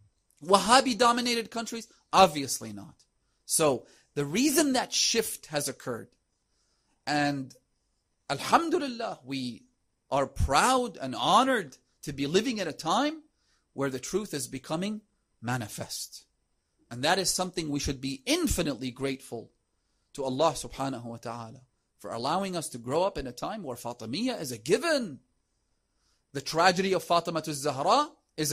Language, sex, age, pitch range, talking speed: English, male, 40-59, 130-210 Hz, 135 wpm